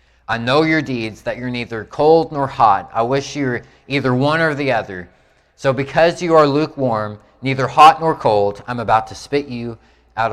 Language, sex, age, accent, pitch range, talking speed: English, male, 30-49, American, 115-150 Hz, 200 wpm